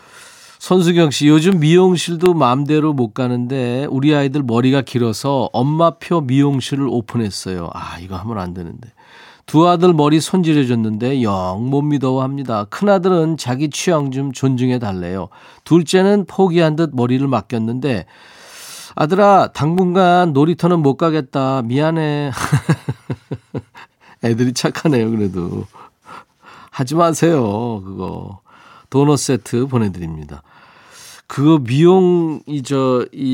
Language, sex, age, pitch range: Korean, male, 40-59, 120-160 Hz